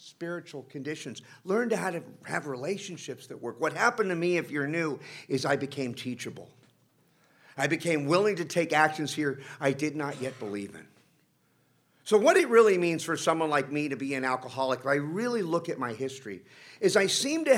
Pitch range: 135-175 Hz